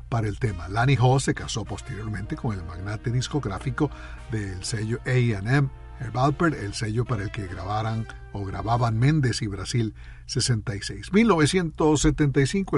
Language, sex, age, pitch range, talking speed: Italian, male, 50-69, 110-145 Hz, 145 wpm